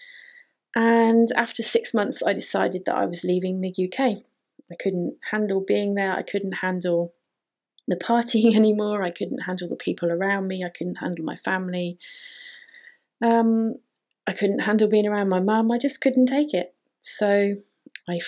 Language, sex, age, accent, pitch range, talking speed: English, female, 30-49, British, 180-230 Hz, 165 wpm